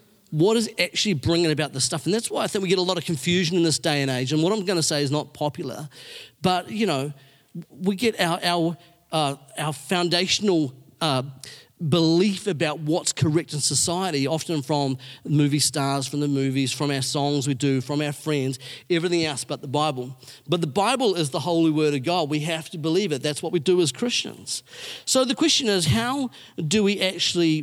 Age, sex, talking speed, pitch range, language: 40-59, male, 215 wpm, 140-175 Hz, English